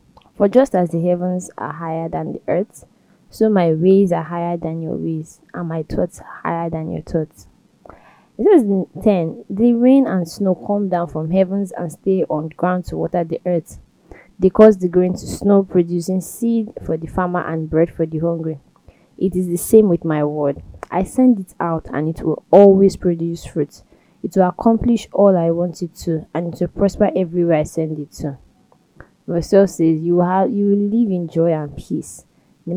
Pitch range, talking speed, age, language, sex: 165-195 Hz, 200 wpm, 20-39, English, female